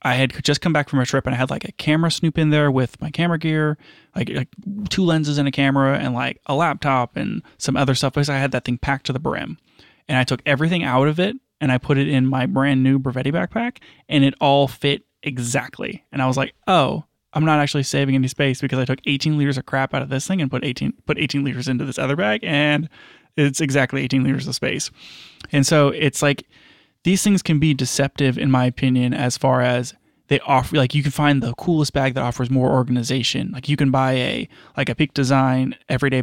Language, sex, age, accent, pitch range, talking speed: English, male, 20-39, American, 130-150 Hz, 240 wpm